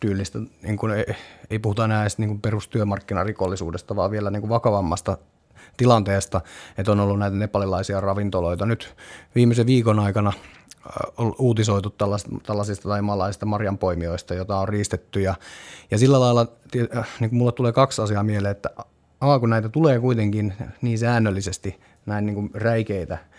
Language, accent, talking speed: Finnish, native, 155 wpm